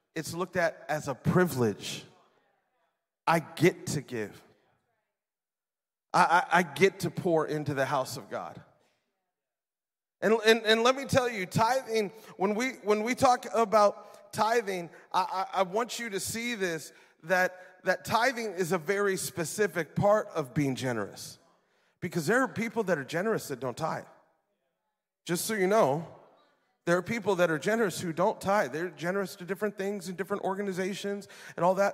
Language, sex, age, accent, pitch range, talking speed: English, male, 40-59, American, 170-215 Hz, 165 wpm